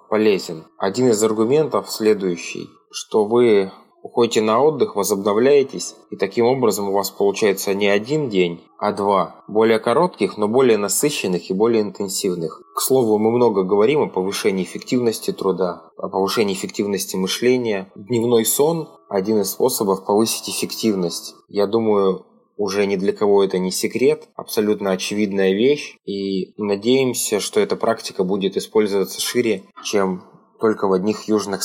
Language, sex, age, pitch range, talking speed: Russian, male, 20-39, 95-115 Hz, 140 wpm